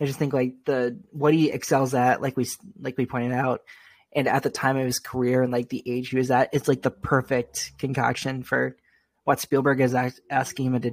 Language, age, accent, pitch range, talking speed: English, 20-39, American, 125-160 Hz, 225 wpm